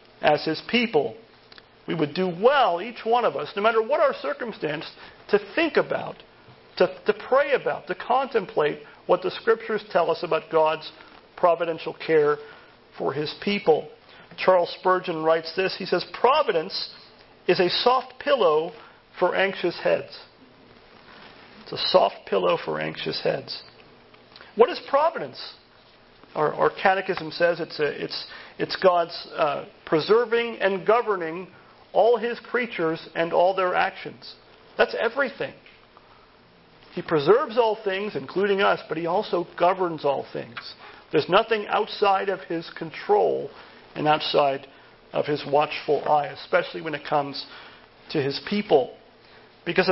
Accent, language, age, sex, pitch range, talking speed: American, English, 40-59, male, 165-230 Hz, 140 wpm